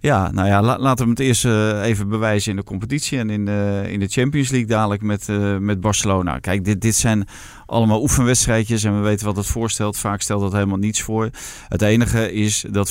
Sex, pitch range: male, 100-110 Hz